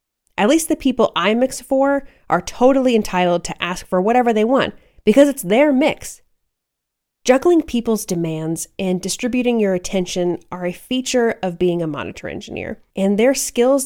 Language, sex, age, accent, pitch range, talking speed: English, female, 30-49, American, 180-245 Hz, 165 wpm